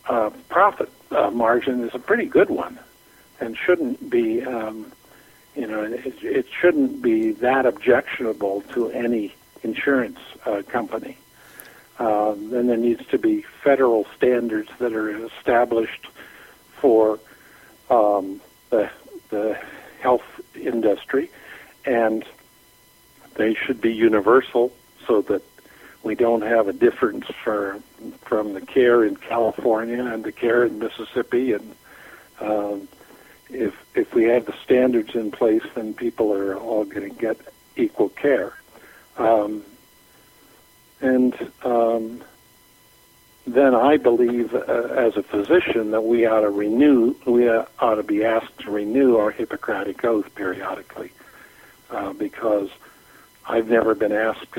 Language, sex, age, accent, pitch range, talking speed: English, male, 60-79, American, 110-120 Hz, 130 wpm